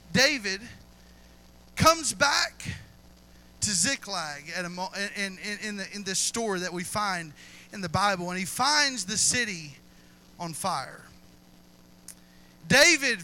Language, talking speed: English, 105 wpm